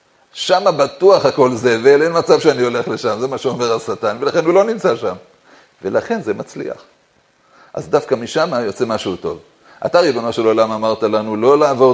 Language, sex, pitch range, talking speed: Hebrew, male, 115-155 Hz, 175 wpm